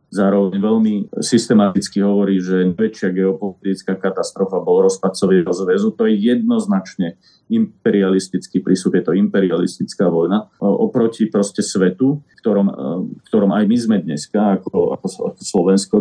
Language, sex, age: Slovak, male, 30-49